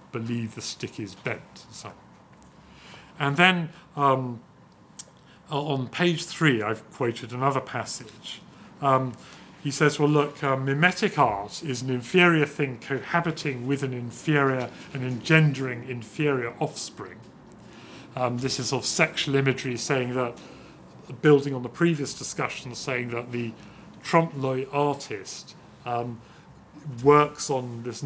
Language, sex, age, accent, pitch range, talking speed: English, male, 40-59, British, 120-145 Hz, 125 wpm